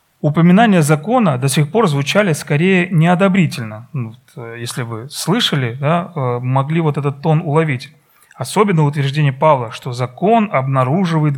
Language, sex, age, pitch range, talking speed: Russian, male, 30-49, 130-170 Hz, 115 wpm